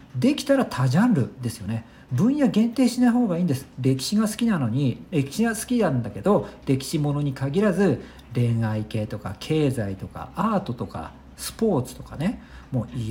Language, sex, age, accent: Japanese, male, 50-69, native